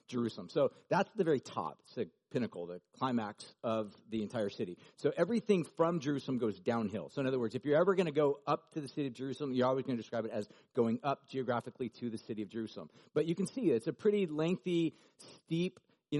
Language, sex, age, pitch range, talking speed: English, male, 40-59, 120-155 Hz, 230 wpm